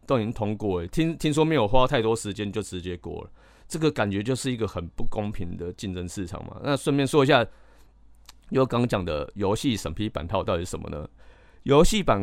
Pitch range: 95-130 Hz